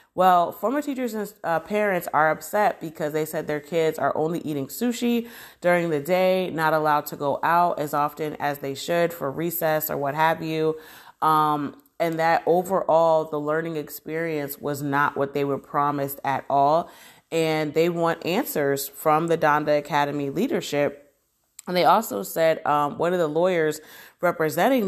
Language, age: English, 30-49